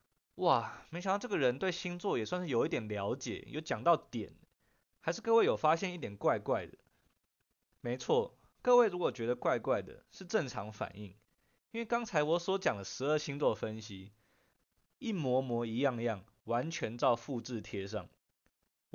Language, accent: Chinese, native